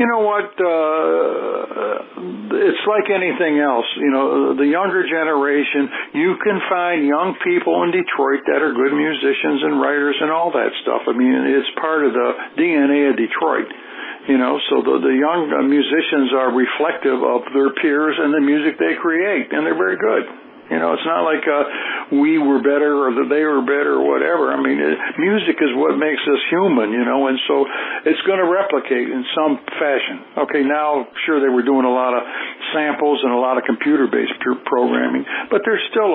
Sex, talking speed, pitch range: male, 190 wpm, 135-165 Hz